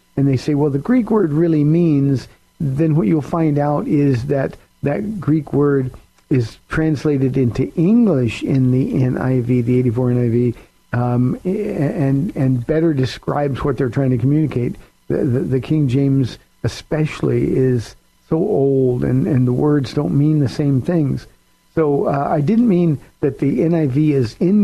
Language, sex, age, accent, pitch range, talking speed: English, male, 50-69, American, 130-155 Hz, 165 wpm